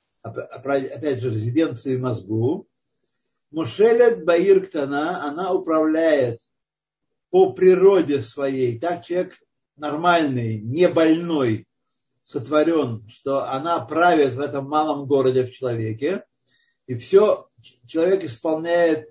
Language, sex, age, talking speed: Russian, male, 60-79, 95 wpm